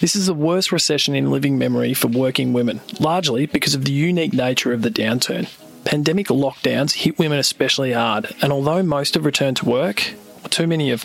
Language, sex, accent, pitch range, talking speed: English, male, Australian, 130-175 Hz, 195 wpm